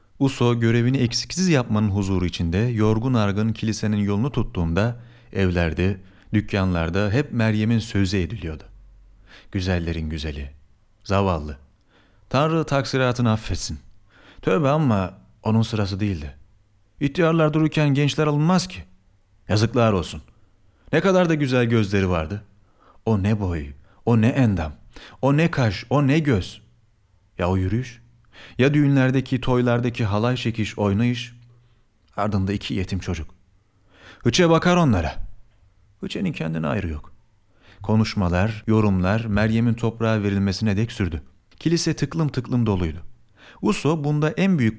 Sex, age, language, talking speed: male, 40-59, Turkish, 120 wpm